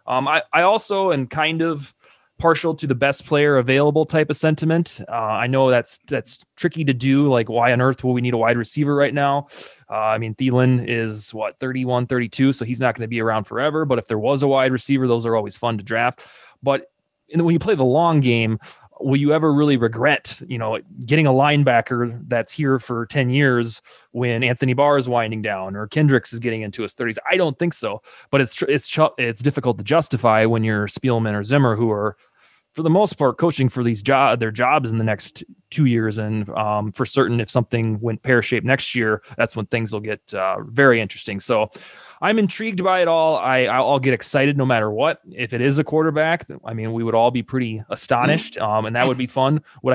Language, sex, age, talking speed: English, male, 20-39, 225 wpm